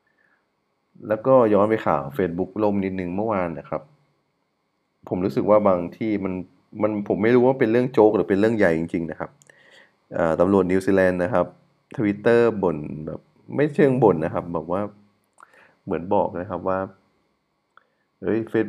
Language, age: Thai, 20-39